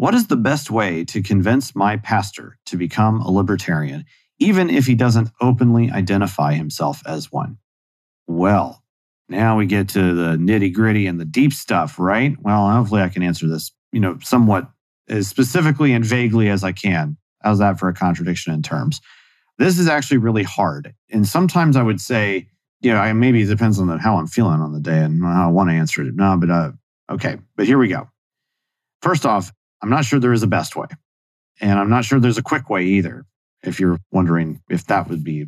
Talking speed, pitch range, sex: 205 wpm, 95-125 Hz, male